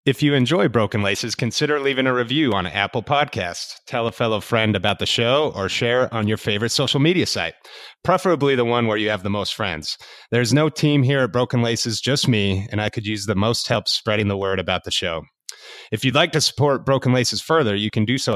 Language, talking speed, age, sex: English, 230 wpm, 30-49, male